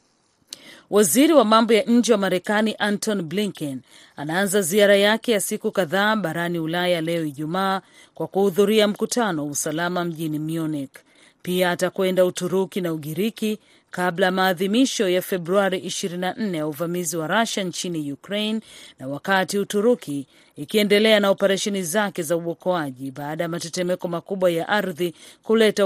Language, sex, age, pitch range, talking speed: Swahili, female, 40-59, 170-205 Hz, 130 wpm